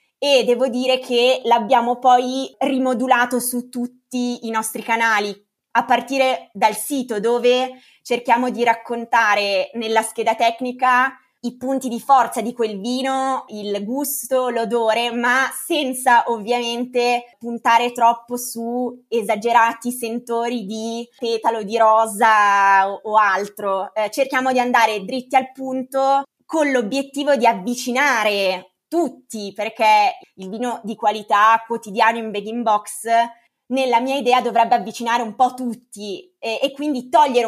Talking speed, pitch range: 130 wpm, 225-255 Hz